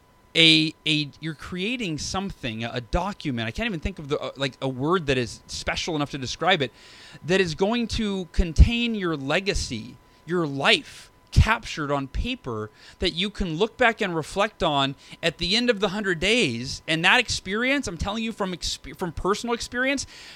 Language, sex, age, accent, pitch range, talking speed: English, male, 30-49, American, 145-210 Hz, 185 wpm